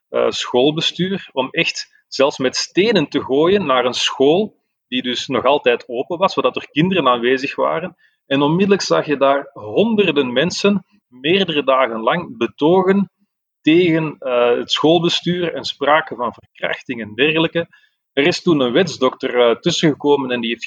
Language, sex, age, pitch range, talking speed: Dutch, male, 30-49, 125-175 Hz, 155 wpm